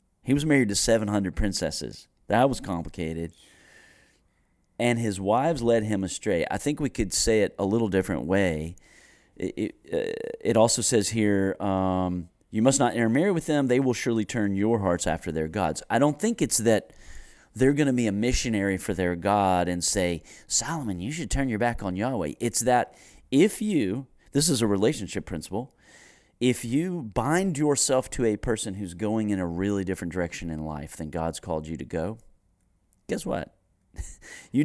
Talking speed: 180 wpm